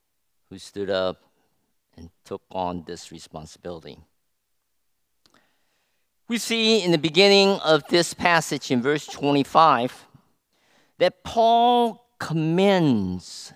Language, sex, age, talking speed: English, male, 50-69, 95 wpm